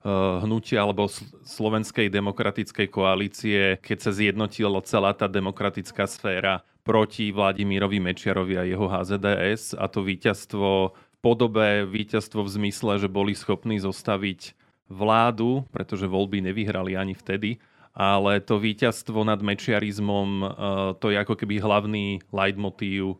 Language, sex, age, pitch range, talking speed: Slovak, male, 30-49, 95-110 Hz, 120 wpm